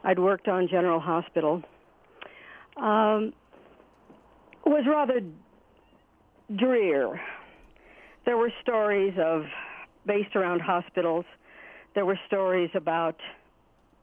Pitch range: 165-205 Hz